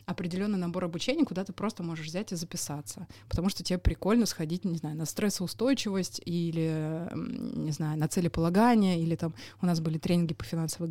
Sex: female